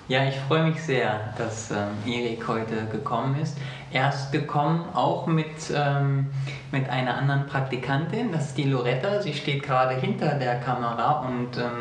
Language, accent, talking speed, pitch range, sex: German, German, 165 wpm, 125-150 Hz, male